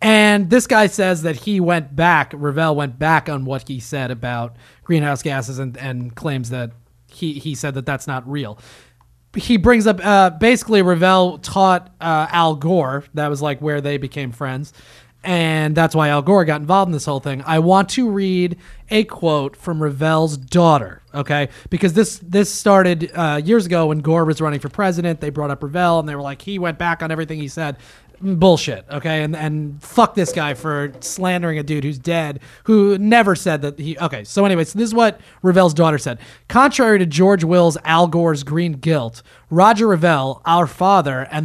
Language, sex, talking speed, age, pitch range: English, male, 195 wpm, 30-49, 145-185 Hz